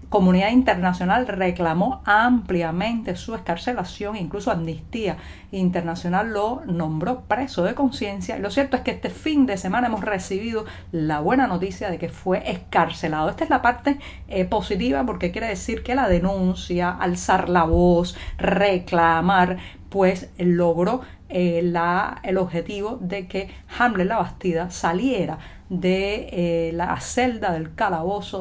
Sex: female